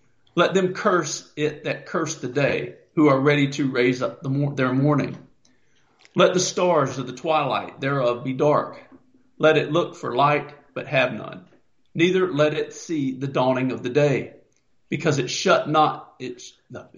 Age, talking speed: 50-69, 175 wpm